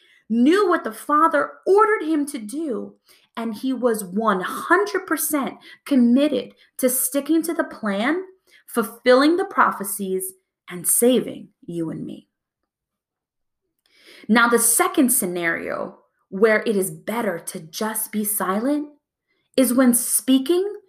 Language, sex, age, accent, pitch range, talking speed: English, female, 20-39, American, 215-290 Hz, 120 wpm